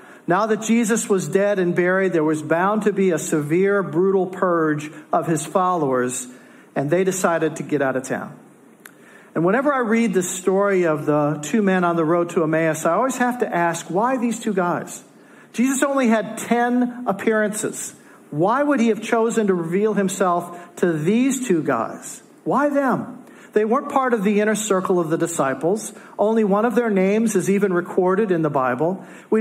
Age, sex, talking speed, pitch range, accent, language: 50-69, male, 190 wpm, 170-225 Hz, American, English